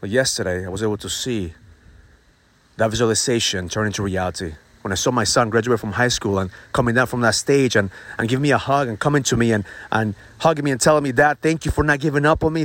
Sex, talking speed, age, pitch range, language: male, 250 wpm, 30-49, 110-145 Hz, English